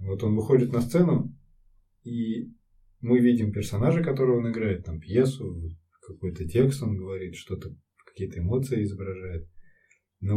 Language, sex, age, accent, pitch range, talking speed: Russian, male, 20-39, native, 90-110 Hz, 135 wpm